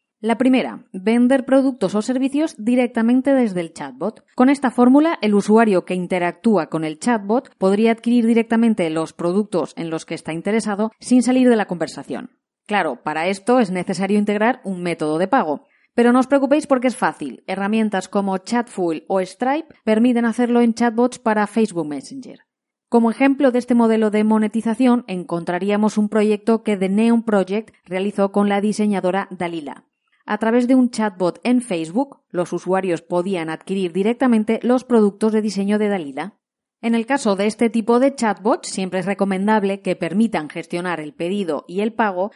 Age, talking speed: 20-39, 170 wpm